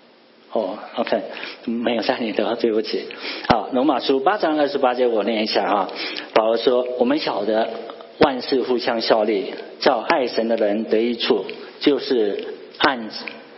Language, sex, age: Chinese, male, 50-69